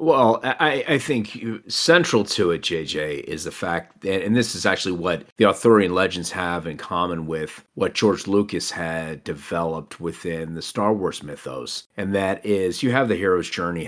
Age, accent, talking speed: 40-59, American, 185 wpm